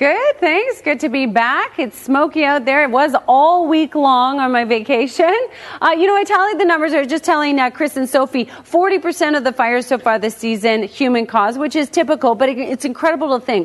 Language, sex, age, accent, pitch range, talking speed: English, female, 30-49, American, 245-315 Hz, 225 wpm